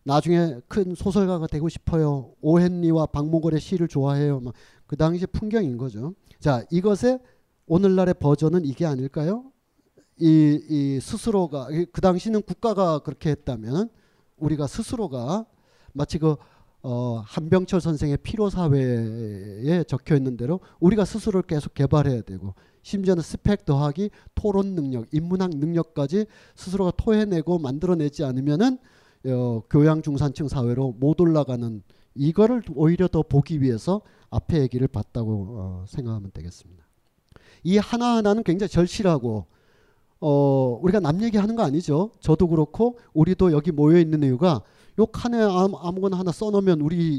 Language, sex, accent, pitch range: Korean, male, native, 135-190 Hz